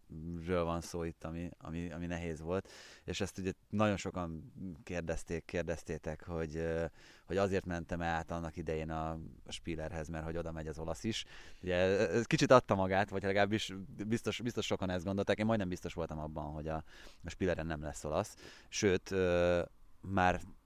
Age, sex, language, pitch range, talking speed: 20-39, male, Hungarian, 80-95 Hz, 170 wpm